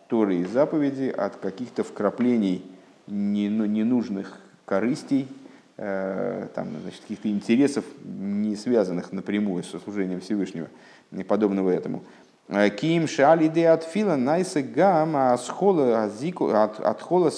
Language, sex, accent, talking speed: Russian, male, native, 80 wpm